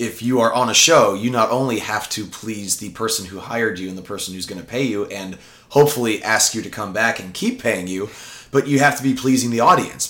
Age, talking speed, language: 30-49, 260 wpm, English